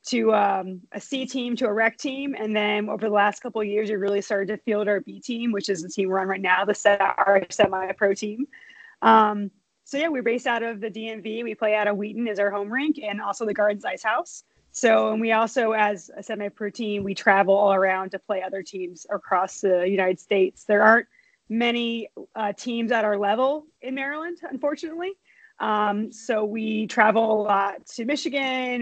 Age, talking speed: 20-39, 210 wpm